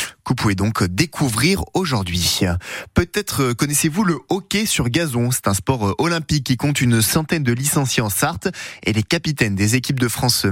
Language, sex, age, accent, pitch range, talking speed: French, male, 20-39, French, 115-155 Hz, 175 wpm